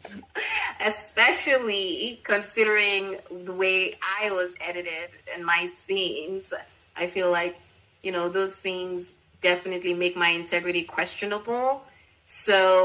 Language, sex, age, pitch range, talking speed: English, female, 20-39, 175-240 Hz, 105 wpm